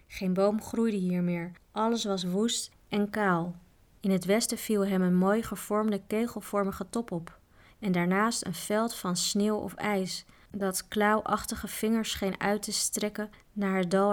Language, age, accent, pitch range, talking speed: Dutch, 20-39, Dutch, 180-215 Hz, 165 wpm